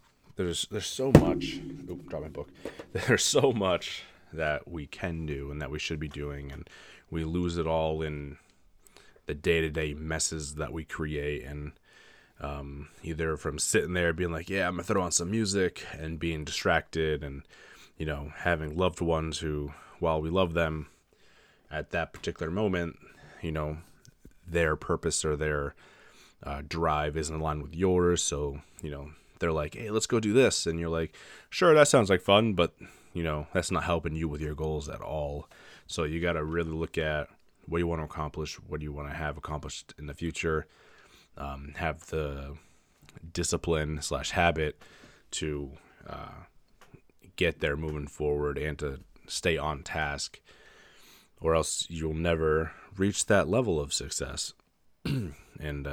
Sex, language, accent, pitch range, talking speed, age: male, English, American, 75-85 Hz, 170 wpm, 20-39